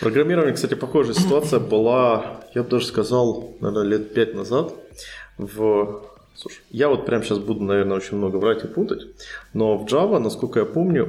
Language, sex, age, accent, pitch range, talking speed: Russian, male, 20-39, native, 105-125 Hz, 160 wpm